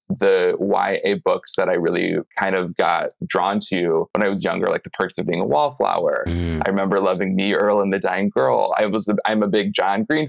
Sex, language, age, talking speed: male, English, 20-39, 225 wpm